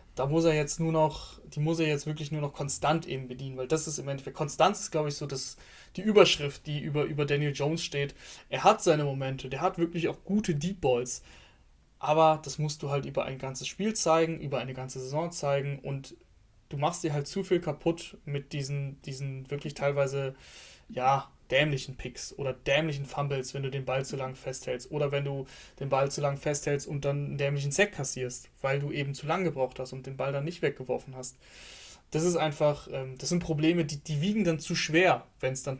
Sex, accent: male, German